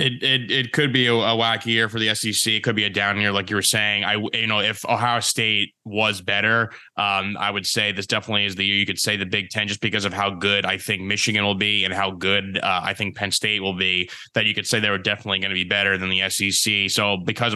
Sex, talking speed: male, 275 wpm